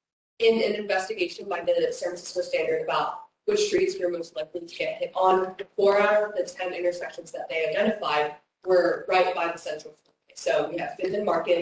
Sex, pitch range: female, 175-230 Hz